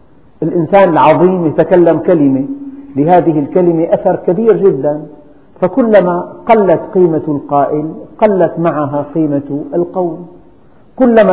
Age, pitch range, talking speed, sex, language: 50-69, 145-185 Hz, 95 wpm, male, Arabic